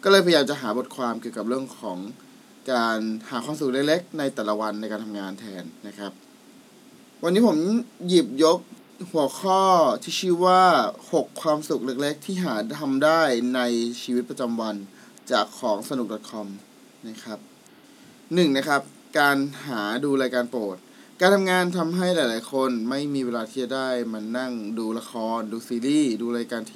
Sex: male